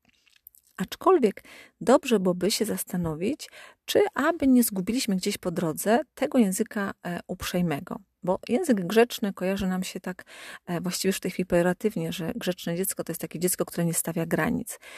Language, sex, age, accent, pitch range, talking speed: Polish, female, 40-59, native, 180-225 Hz, 150 wpm